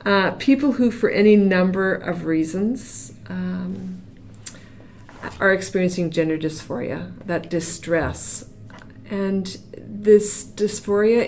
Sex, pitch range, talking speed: female, 140-195 Hz, 95 wpm